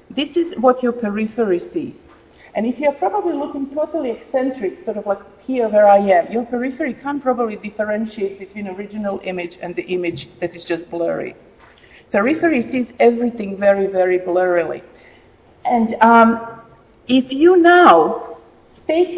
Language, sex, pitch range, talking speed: English, female, 200-270 Hz, 145 wpm